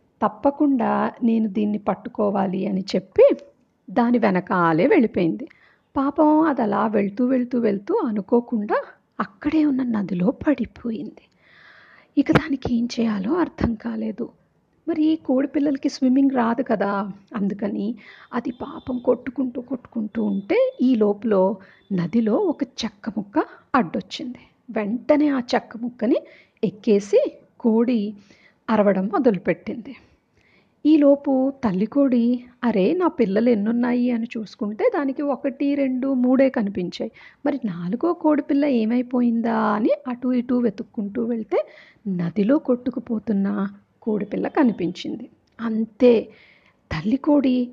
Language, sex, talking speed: Telugu, female, 100 wpm